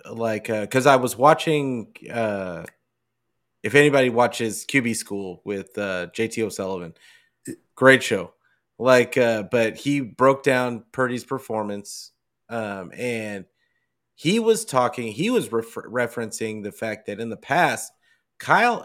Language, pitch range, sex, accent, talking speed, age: English, 115-145 Hz, male, American, 135 wpm, 30-49